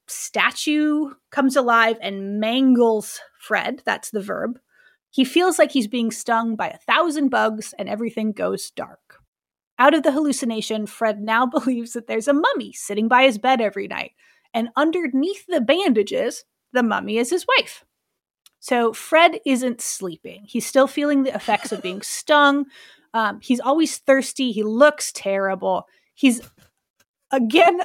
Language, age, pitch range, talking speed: English, 30-49, 220-290 Hz, 150 wpm